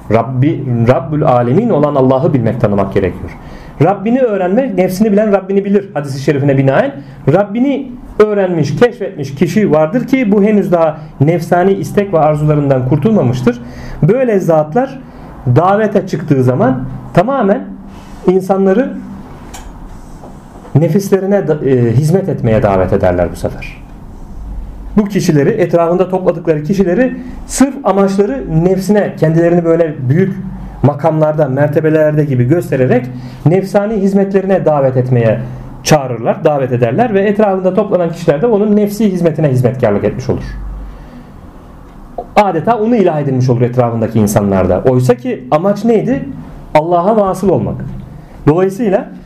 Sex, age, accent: male, 40-59, native